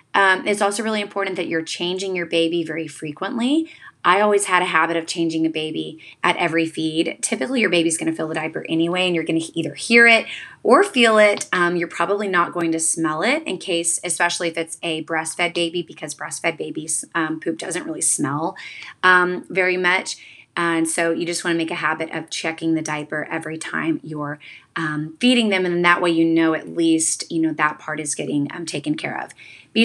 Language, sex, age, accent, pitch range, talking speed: English, female, 20-39, American, 160-185 Hz, 215 wpm